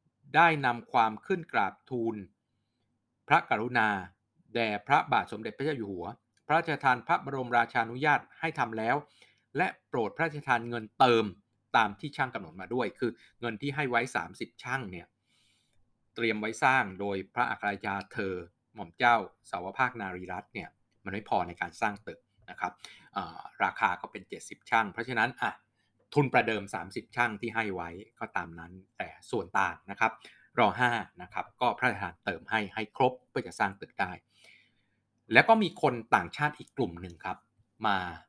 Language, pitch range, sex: Thai, 100-130 Hz, male